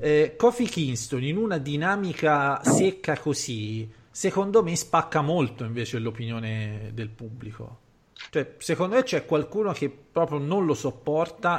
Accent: native